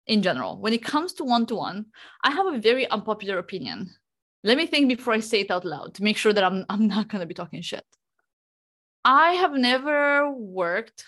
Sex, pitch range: female, 200-270 Hz